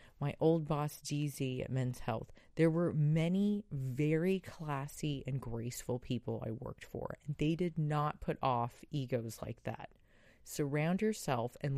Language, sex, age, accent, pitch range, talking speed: English, female, 30-49, American, 130-170 Hz, 155 wpm